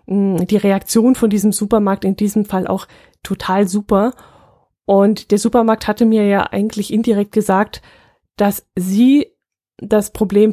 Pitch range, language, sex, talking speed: 190-225 Hz, German, female, 135 wpm